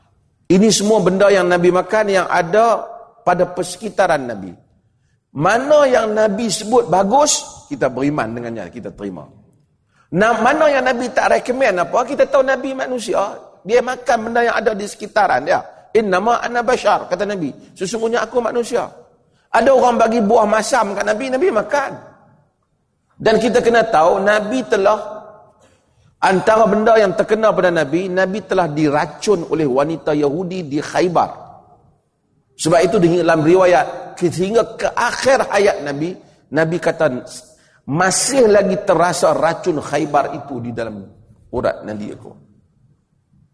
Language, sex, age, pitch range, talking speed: Malay, male, 40-59, 145-220 Hz, 140 wpm